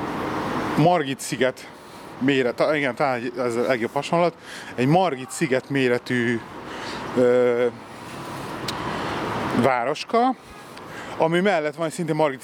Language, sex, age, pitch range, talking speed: Hungarian, male, 30-49, 135-170 Hz, 85 wpm